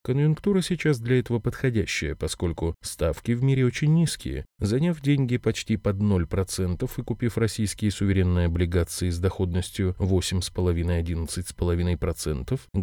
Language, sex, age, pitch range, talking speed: Russian, male, 20-39, 95-130 Hz, 110 wpm